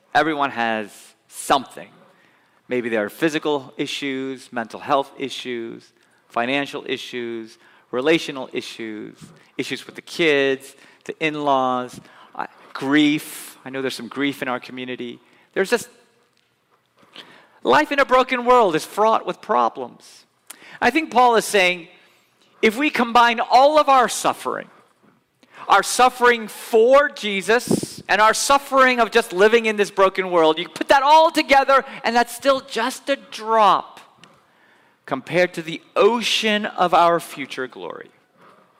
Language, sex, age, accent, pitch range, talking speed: English, male, 40-59, American, 135-225 Hz, 135 wpm